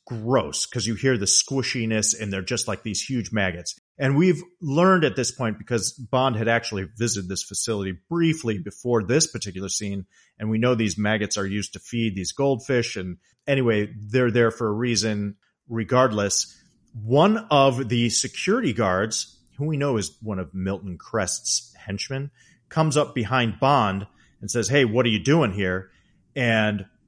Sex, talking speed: male, 170 wpm